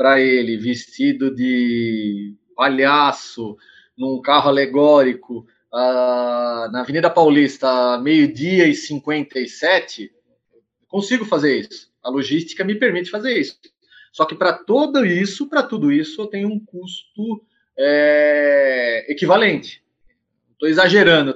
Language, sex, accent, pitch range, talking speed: Portuguese, male, Brazilian, 135-200 Hz, 110 wpm